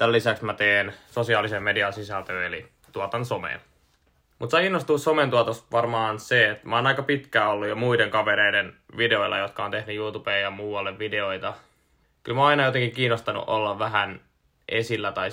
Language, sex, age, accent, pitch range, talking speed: Finnish, male, 20-39, native, 100-120 Hz, 170 wpm